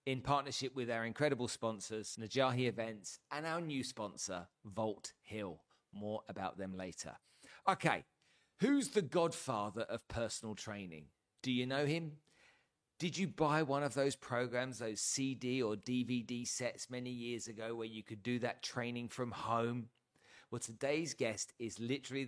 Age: 40-59